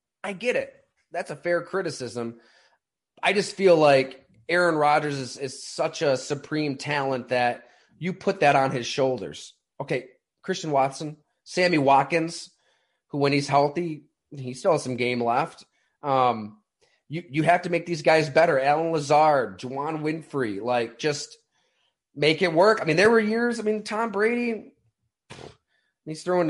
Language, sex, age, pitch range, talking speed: English, male, 30-49, 135-175 Hz, 160 wpm